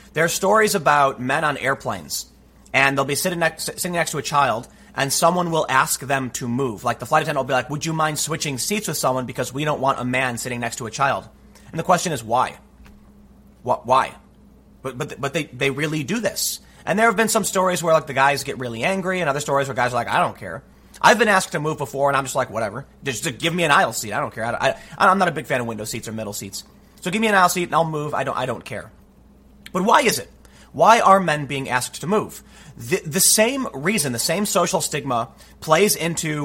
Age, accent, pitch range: 30-49, American, 130-180 Hz